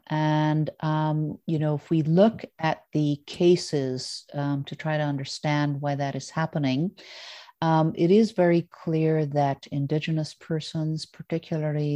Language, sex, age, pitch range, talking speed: English, female, 50-69, 145-165 Hz, 140 wpm